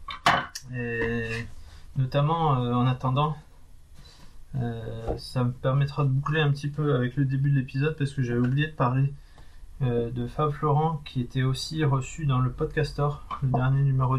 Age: 20-39